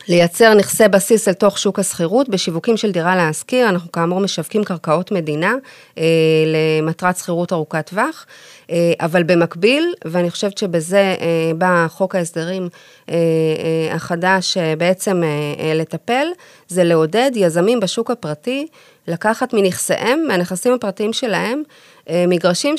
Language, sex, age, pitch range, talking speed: Hebrew, female, 30-49, 170-225 Hz, 135 wpm